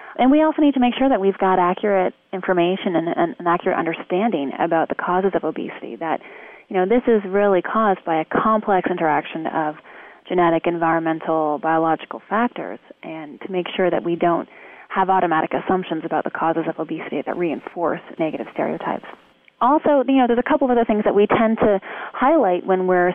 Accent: American